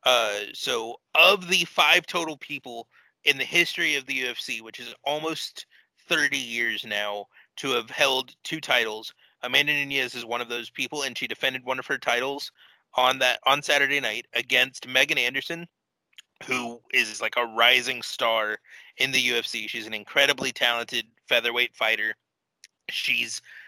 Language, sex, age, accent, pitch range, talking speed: English, male, 30-49, American, 115-145 Hz, 155 wpm